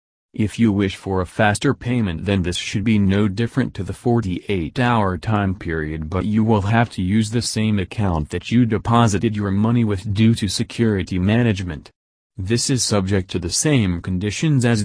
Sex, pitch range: male, 90-115 Hz